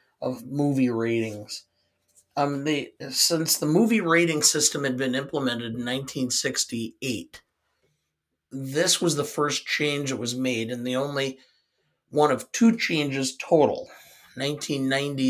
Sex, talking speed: male, 125 wpm